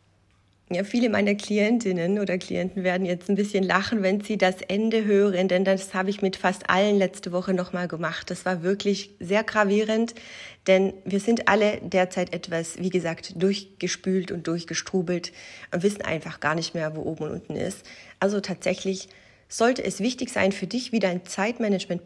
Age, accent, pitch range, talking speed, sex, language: 30-49, German, 180-215 Hz, 175 wpm, female, German